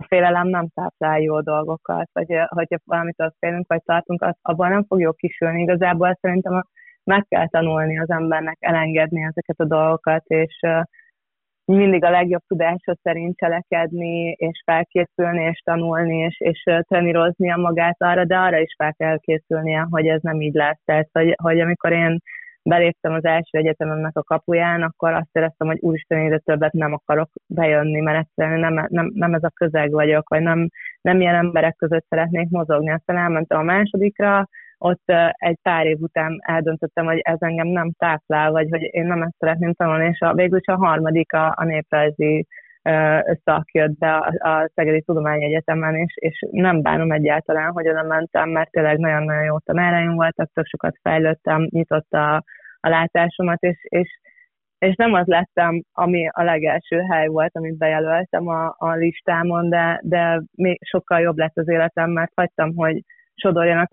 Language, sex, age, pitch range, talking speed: Hungarian, female, 20-39, 160-175 Hz, 165 wpm